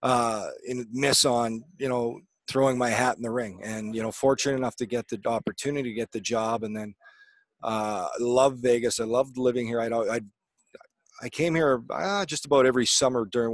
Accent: American